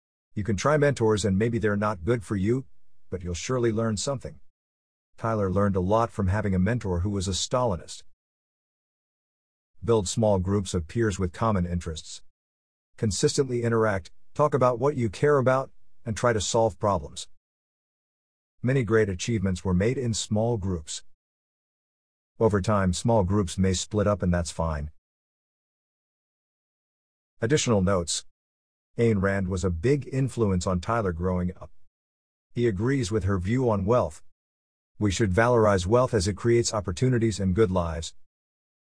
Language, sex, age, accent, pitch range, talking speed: English, male, 50-69, American, 85-115 Hz, 150 wpm